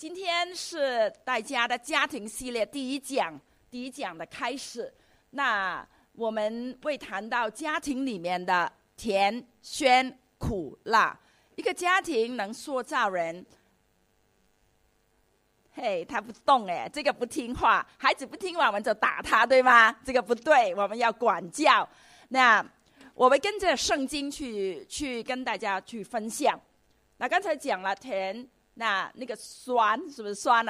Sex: female